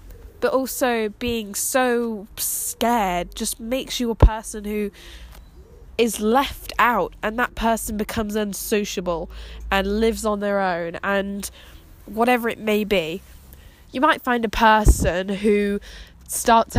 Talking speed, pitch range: 130 wpm, 195-235 Hz